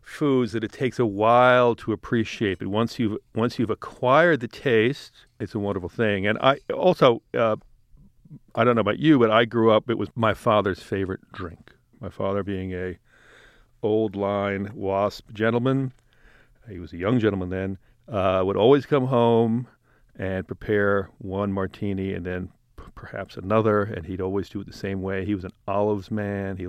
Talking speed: 180 wpm